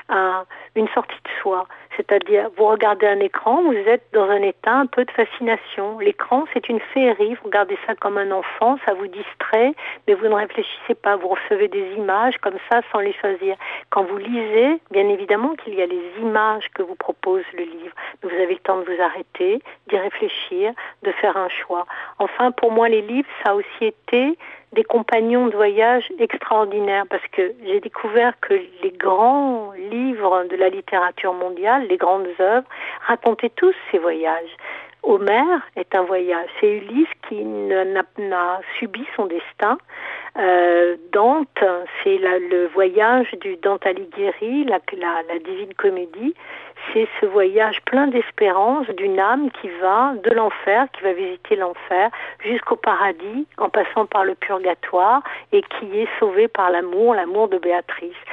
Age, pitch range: 60-79, 195-280 Hz